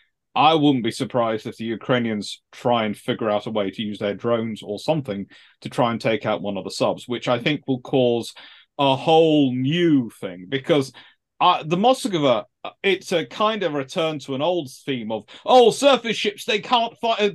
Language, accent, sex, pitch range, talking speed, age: English, British, male, 120-170 Hz, 195 wpm, 40-59